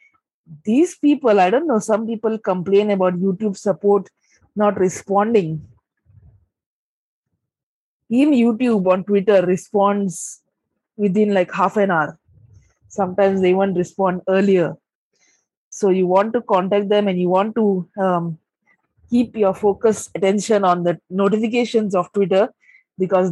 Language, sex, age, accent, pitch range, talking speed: English, female, 20-39, Indian, 185-210 Hz, 125 wpm